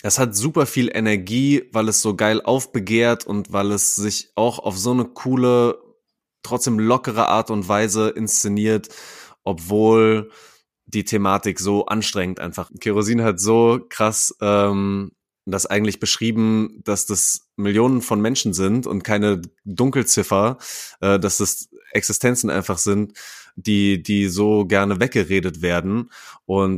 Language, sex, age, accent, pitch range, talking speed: German, male, 20-39, German, 95-110 Hz, 135 wpm